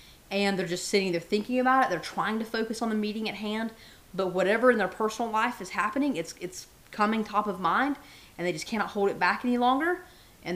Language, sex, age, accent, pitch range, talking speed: English, female, 30-49, American, 175-230 Hz, 235 wpm